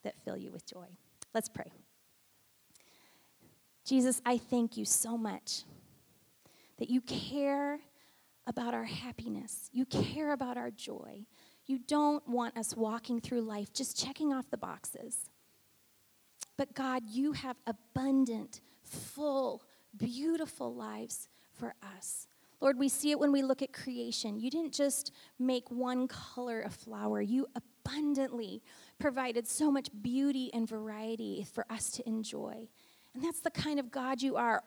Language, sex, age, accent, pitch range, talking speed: English, female, 30-49, American, 230-280 Hz, 145 wpm